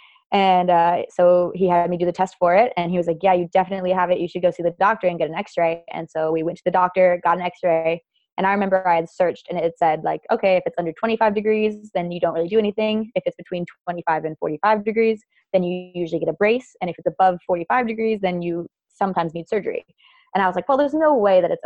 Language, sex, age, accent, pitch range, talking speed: English, female, 20-39, American, 170-200 Hz, 265 wpm